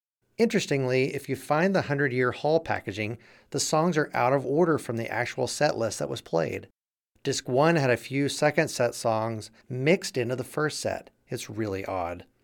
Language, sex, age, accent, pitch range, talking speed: English, male, 30-49, American, 115-150 Hz, 185 wpm